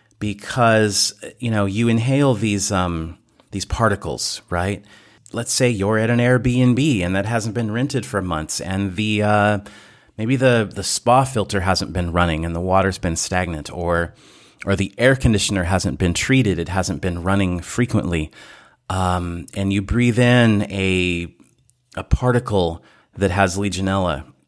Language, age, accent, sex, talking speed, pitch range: English, 30-49, American, male, 155 wpm, 90-120 Hz